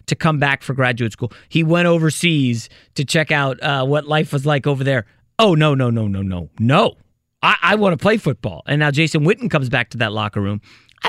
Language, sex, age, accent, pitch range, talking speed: English, male, 30-49, American, 115-155 Hz, 225 wpm